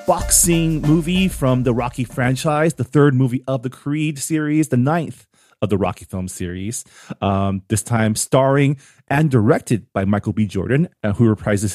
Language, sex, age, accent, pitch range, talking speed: English, male, 30-49, American, 100-135 Hz, 165 wpm